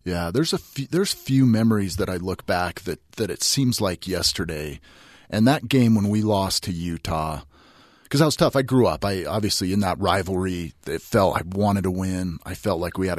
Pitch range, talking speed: 85-105 Hz, 220 wpm